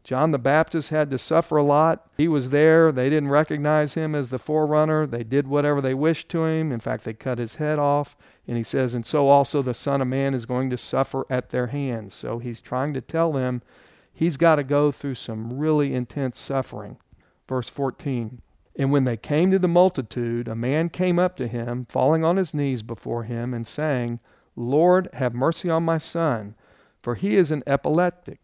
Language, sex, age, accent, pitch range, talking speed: English, male, 50-69, American, 120-155 Hz, 205 wpm